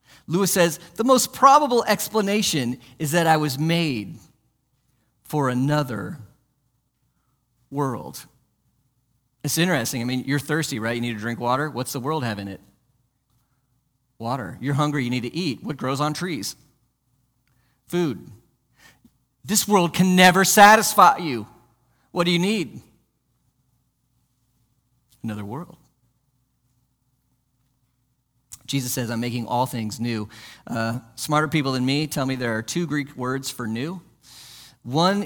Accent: American